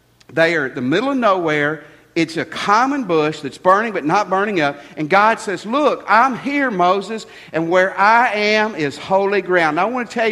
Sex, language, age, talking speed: male, English, 50-69, 210 wpm